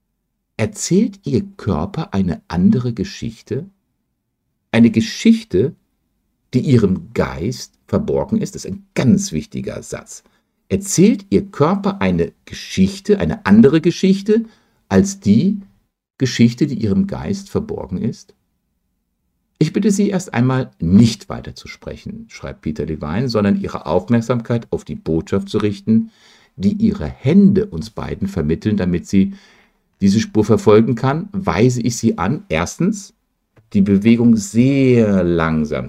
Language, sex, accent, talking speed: German, male, German, 125 wpm